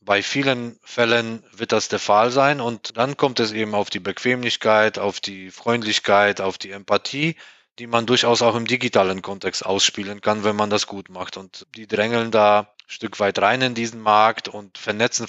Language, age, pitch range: German, 20-39, 100-115 Hz